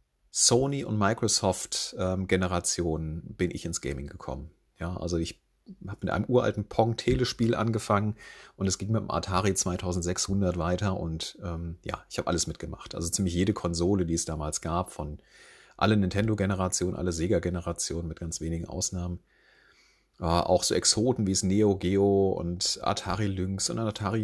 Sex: male